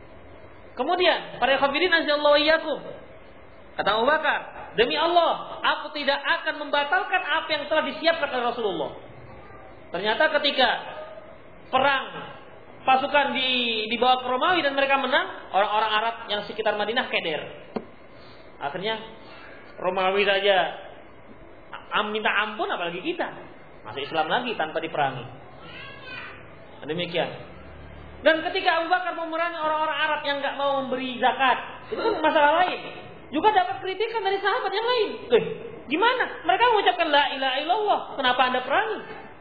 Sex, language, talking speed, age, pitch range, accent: male, Indonesian, 120 wpm, 30-49, 260-330 Hz, native